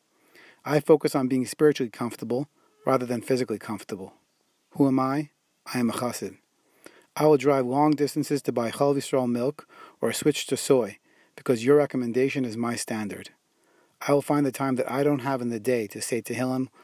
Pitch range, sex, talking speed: 120-140 Hz, male, 180 wpm